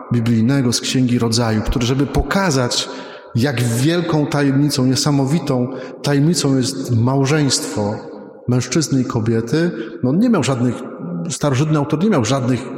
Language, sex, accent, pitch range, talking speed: Polish, male, native, 120-155 Hz, 125 wpm